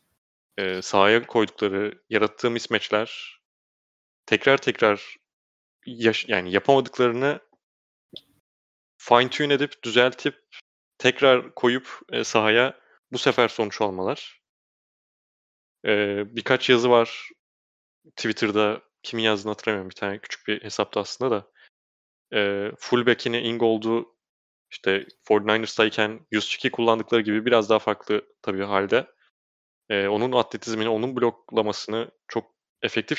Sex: male